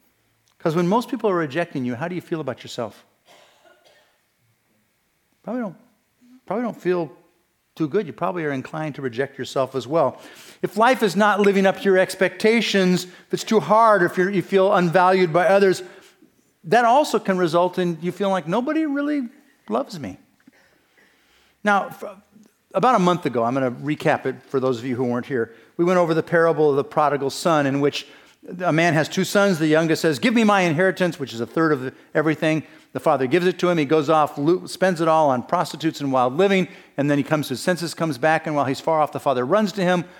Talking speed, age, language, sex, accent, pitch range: 215 wpm, 50-69, English, male, American, 155-205 Hz